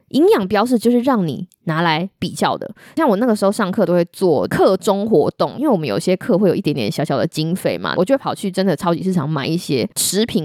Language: Chinese